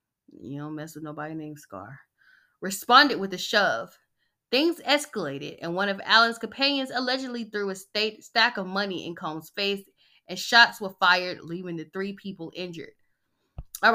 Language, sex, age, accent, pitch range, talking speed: English, female, 20-39, American, 170-230 Hz, 165 wpm